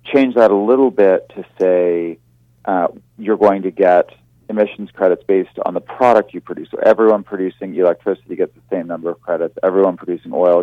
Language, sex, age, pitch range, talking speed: English, male, 40-59, 90-110 Hz, 185 wpm